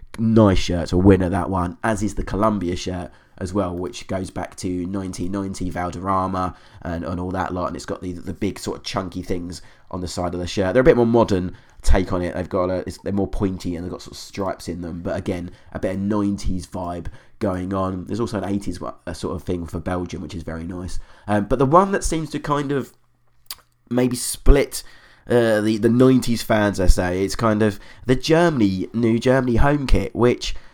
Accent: British